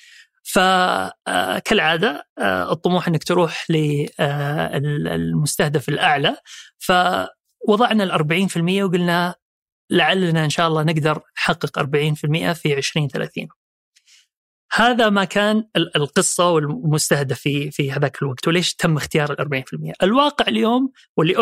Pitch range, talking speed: 150-190 Hz, 110 wpm